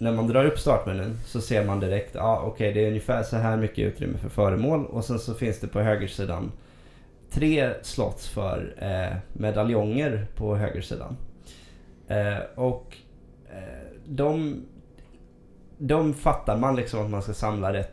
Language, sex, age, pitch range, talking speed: Swedish, male, 20-39, 100-125 Hz, 165 wpm